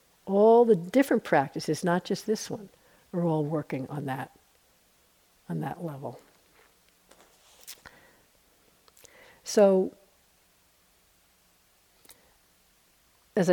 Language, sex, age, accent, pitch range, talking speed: English, female, 60-79, American, 170-210 Hz, 80 wpm